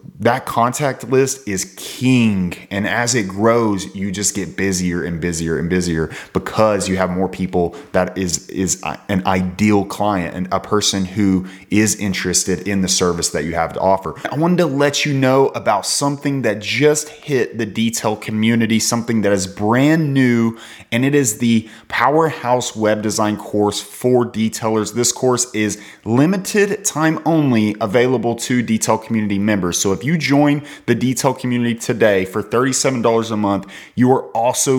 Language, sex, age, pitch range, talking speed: English, male, 20-39, 100-125 Hz, 170 wpm